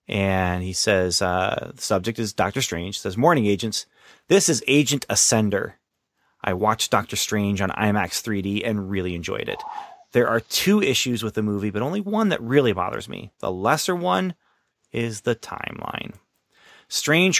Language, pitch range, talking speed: English, 105-140 Hz, 170 wpm